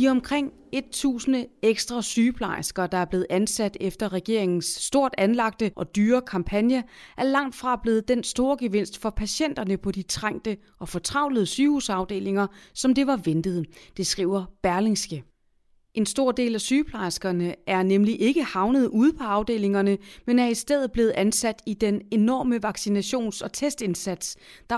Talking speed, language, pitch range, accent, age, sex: 155 wpm, Danish, 185-240 Hz, native, 30-49, female